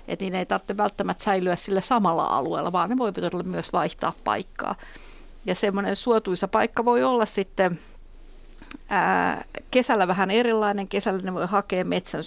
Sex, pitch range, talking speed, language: female, 185-220 Hz, 155 wpm, Finnish